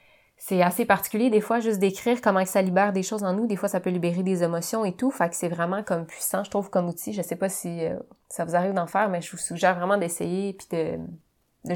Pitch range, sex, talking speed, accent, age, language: 170-200 Hz, female, 260 wpm, Canadian, 20-39, French